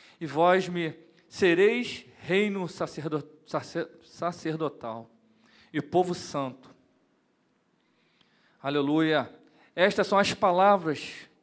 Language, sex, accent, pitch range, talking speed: Portuguese, male, Brazilian, 125-170 Hz, 75 wpm